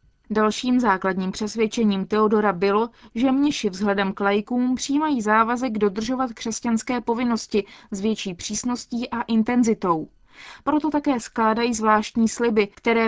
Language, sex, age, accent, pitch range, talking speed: Czech, female, 20-39, native, 205-245 Hz, 120 wpm